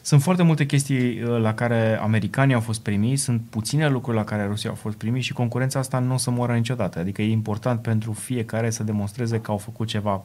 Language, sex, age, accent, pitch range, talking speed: Romanian, male, 20-39, native, 105-130 Hz, 225 wpm